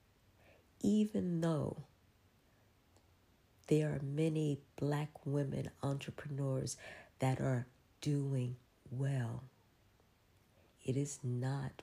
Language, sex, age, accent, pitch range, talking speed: English, female, 40-59, American, 115-145 Hz, 75 wpm